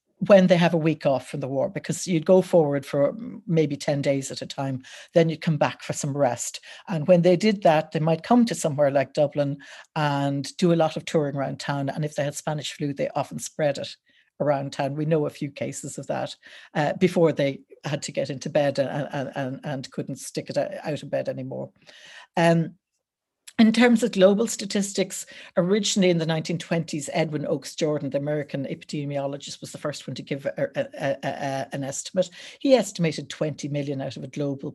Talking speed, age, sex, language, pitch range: 210 wpm, 60-79, female, English, 140-175 Hz